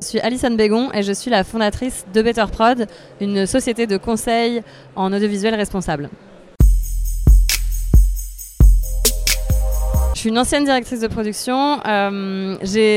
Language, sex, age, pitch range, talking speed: French, female, 20-39, 185-230 Hz, 130 wpm